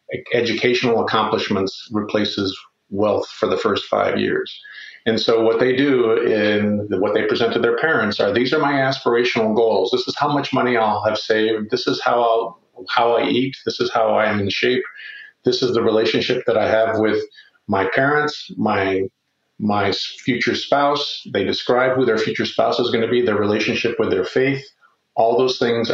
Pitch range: 105-125 Hz